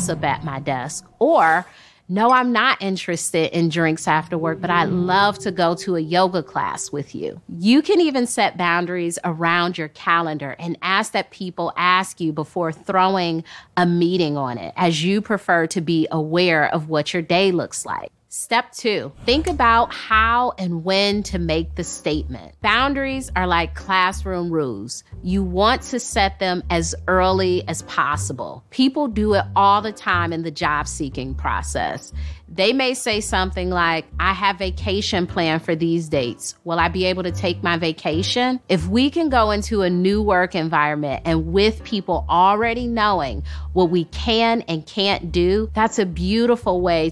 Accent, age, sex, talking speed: American, 30-49, female, 170 wpm